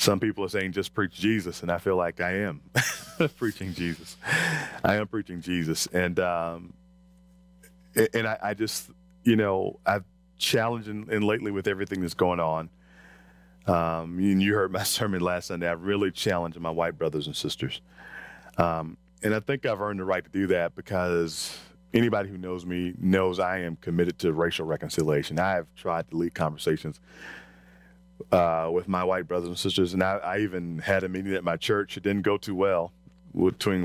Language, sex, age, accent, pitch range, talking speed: English, male, 40-59, American, 85-100 Hz, 185 wpm